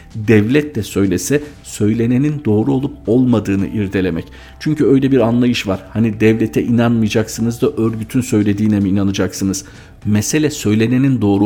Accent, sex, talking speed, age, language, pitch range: native, male, 125 wpm, 50-69, Turkish, 100-120 Hz